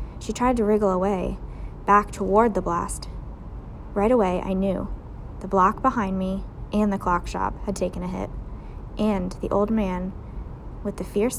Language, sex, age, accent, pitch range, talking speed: English, female, 20-39, American, 190-245 Hz, 170 wpm